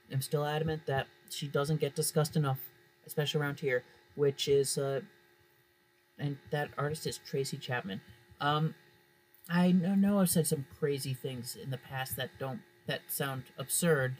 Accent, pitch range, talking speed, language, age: American, 120-150 Hz, 155 wpm, English, 30-49